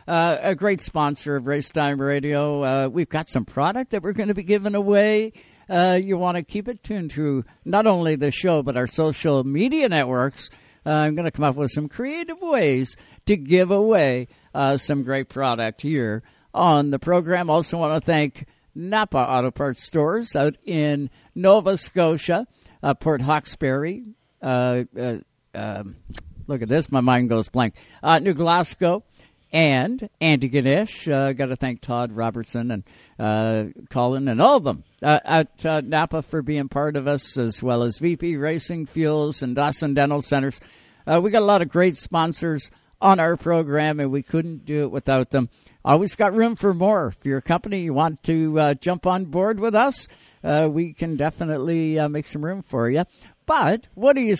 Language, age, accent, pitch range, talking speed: English, 60-79, American, 135-180 Hz, 190 wpm